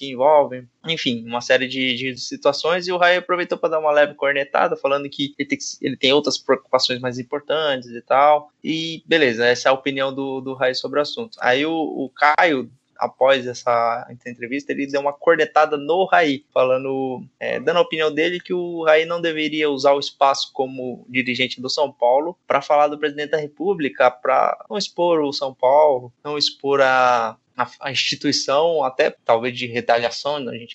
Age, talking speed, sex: 20-39, 190 wpm, male